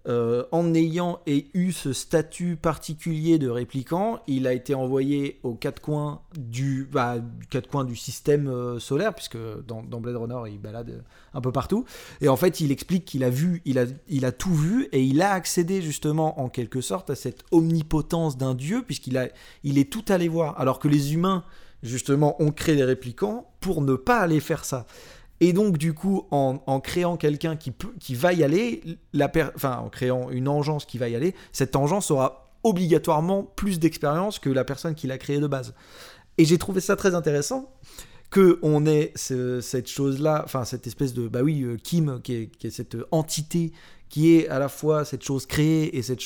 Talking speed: 200 wpm